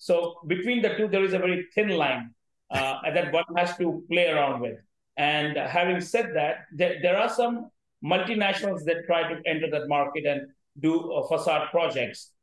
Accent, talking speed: Indian, 190 wpm